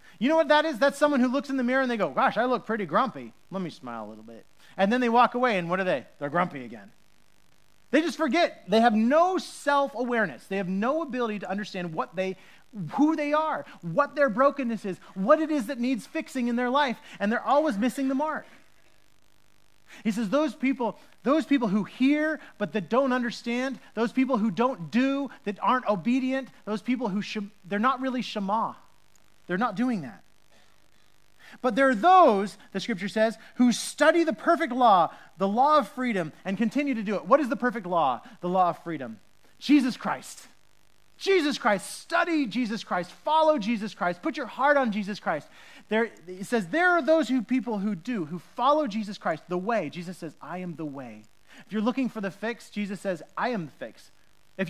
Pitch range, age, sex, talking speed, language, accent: 200-270 Hz, 30-49, male, 205 wpm, English, American